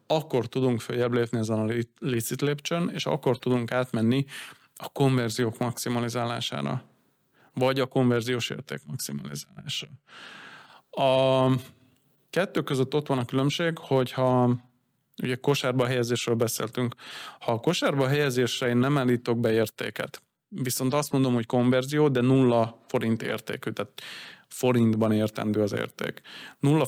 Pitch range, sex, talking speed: 115-135 Hz, male, 125 wpm